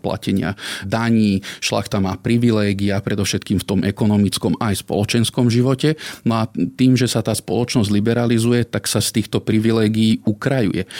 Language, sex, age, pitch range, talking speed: Slovak, male, 40-59, 100-120 Hz, 140 wpm